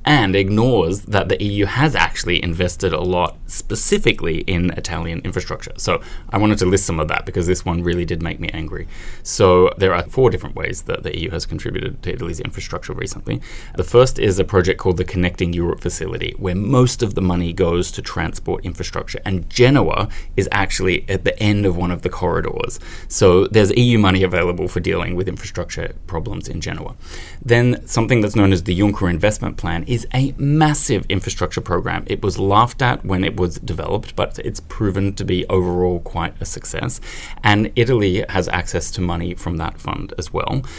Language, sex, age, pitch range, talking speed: English, male, 20-39, 90-105 Hz, 190 wpm